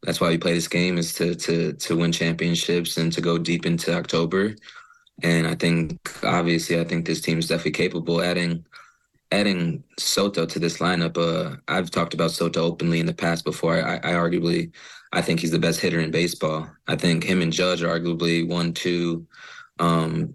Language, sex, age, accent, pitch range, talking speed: English, male, 20-39, American, 85-90 Hz, 195 wpm